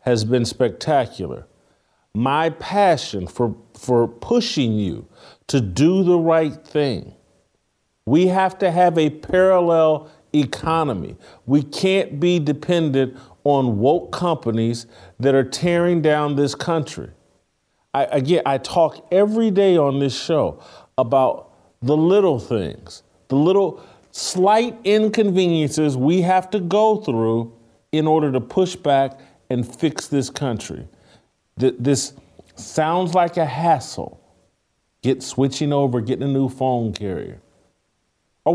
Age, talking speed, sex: 40-59, 120 wpm, male